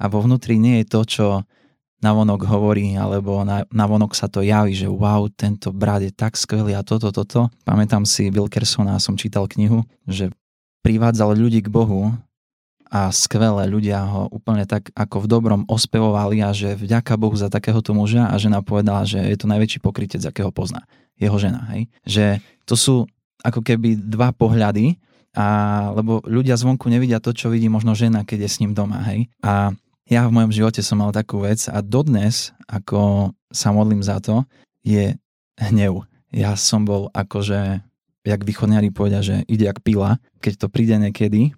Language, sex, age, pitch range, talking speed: Slovak, male, 20-39, 100-115 Hz, 180 wpm